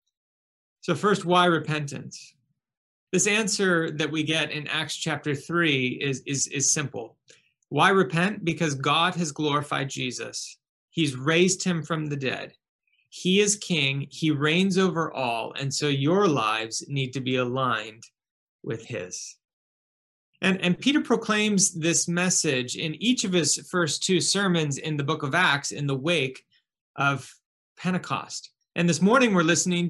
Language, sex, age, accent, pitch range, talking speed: English, male, 30-49, American, 145-180 Hz, 150 wpm